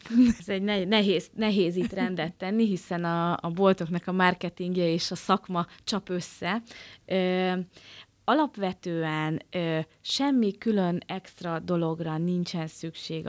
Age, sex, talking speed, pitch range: 20-39, female, 120 wpm, 160-205 Hz